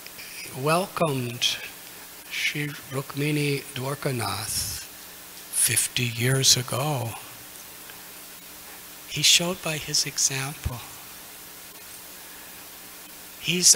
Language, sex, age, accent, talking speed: English, male, 60-79, American, 55 wpm